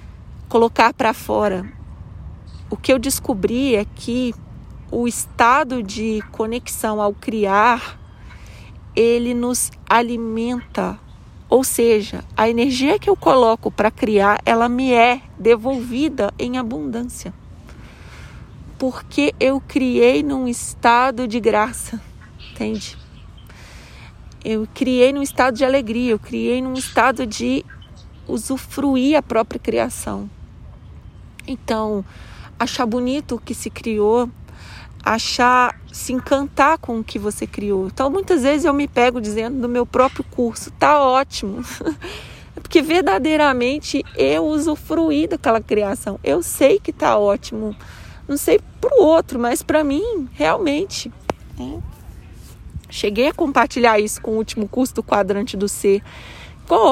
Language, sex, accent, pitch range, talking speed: Portuguese, female, Brazilian, 215-270 Hz, 125 wpm